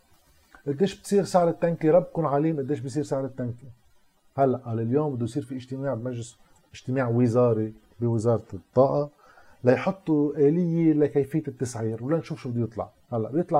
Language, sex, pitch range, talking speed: Arabic, male, 120-160 Hz, 155 wpm